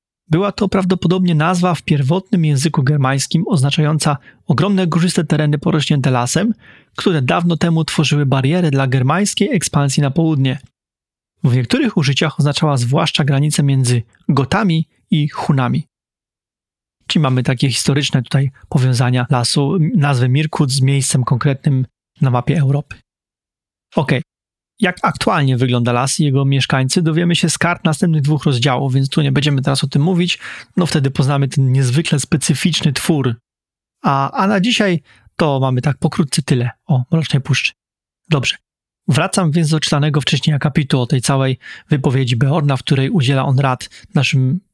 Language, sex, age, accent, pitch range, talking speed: Polish, male, 30-49, native, 135-165 Hz, 150 wpm